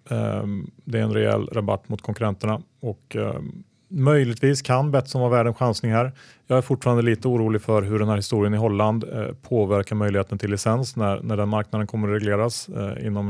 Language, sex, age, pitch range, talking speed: Swedish, male, 30-49, 100-125 Hz, 180 wpm